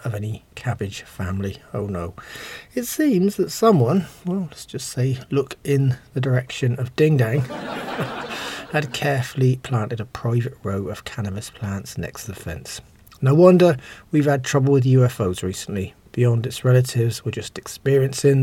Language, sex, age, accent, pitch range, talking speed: English, male, 40-59, British, 120-150 Hz, 155 wpm